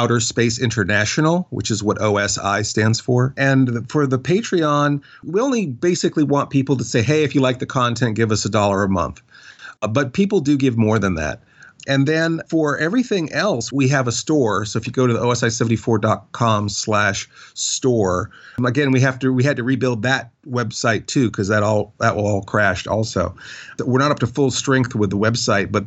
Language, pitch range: English, 105-135 Hz